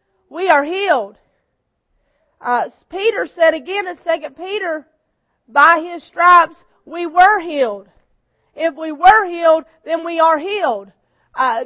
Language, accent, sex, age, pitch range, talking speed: English, American, female, 40-59, 300-370 Hz, 130 wpm